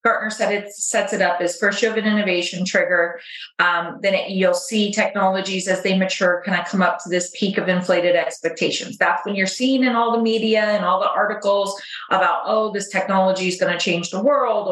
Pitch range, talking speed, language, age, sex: 180-225 Hz, 220 wpm, English, 30-49, female